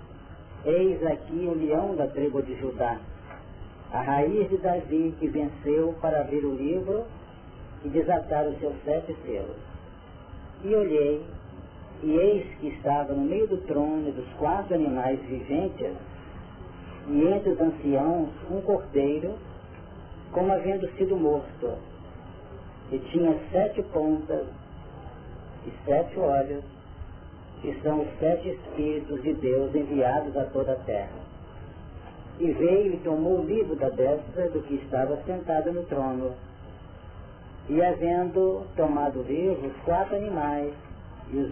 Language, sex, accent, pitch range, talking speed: Portuguese, male, Brazilian, 100-165 Hz, 130 wpm